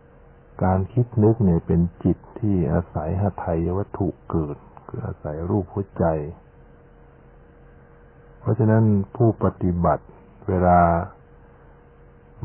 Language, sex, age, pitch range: Thai, male, 60-79, 70-95 Hz